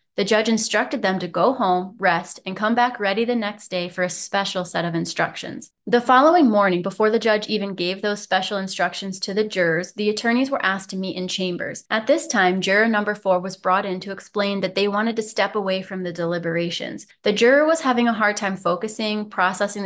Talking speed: 220 wpm